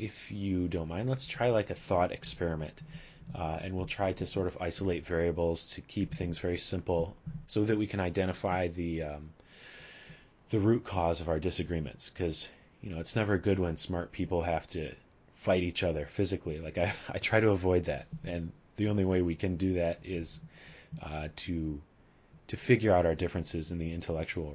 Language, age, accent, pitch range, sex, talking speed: English, 30-49, American, 85-100 Hz, male, 190 wpm